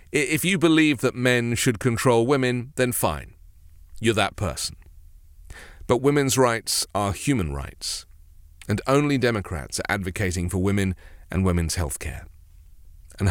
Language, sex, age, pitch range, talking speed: English, male, 40-59, 85-120 Hz, 140 wpm